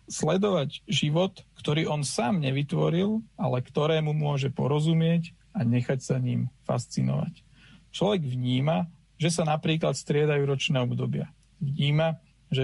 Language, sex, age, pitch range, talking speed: Slovak, male, 40-59, 135-165 Hz, 120 wpm